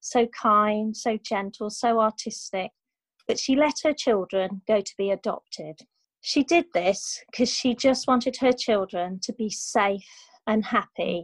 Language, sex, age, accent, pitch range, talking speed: English, female, 30-49, British, 195-235 Hz, 155 wpm